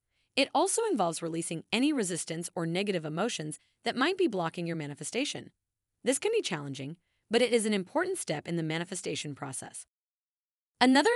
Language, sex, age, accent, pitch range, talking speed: English, female, 30-49, American, 160-250 Hz, 160 wpm